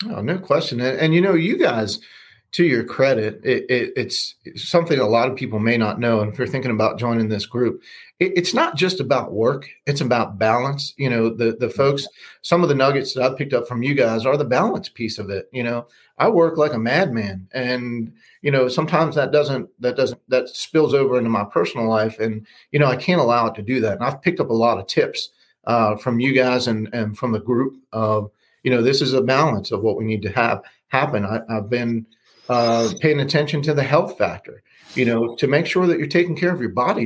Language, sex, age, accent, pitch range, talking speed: English, male, 40-59, American, 115-145 Hz, 240 wpm